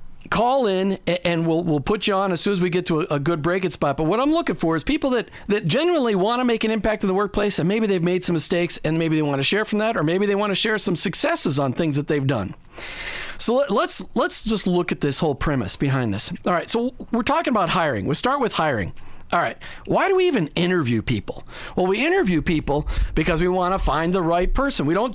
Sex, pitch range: male, 155-215 Hz